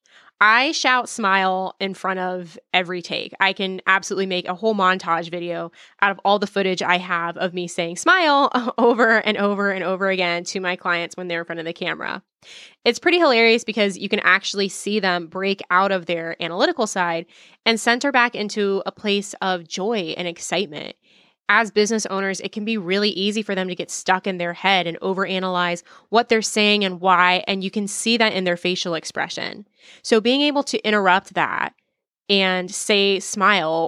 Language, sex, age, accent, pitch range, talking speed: English, female, 20-39, American, 180-210 Hz, 195 wpm